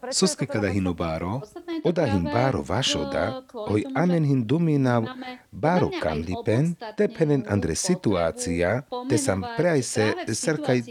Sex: male